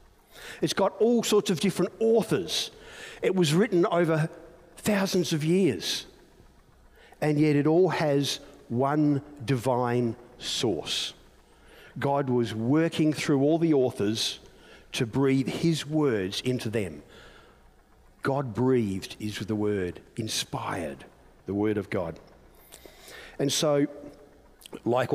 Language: English